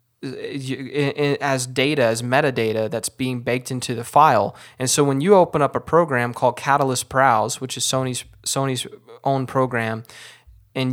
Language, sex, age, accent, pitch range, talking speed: English, male, 20-39, American, 120-135 Hz, 155 wpm